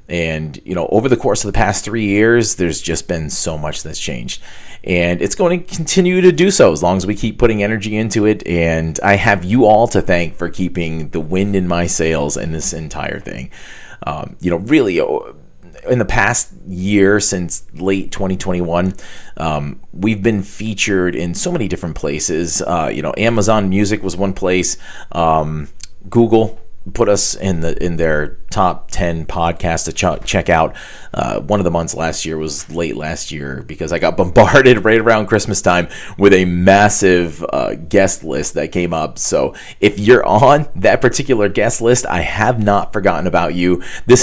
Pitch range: 85-105 Hz